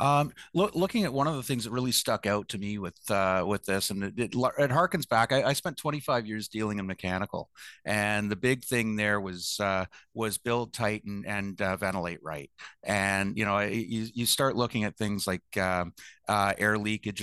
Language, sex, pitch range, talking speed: English, male, 100-120 Hz, 205 wpm